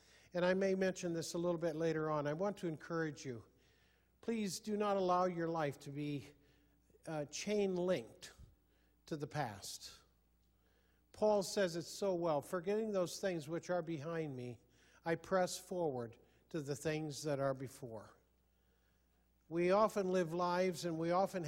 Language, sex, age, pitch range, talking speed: English, male, 50-69, 135-185 Hz, 155 wpm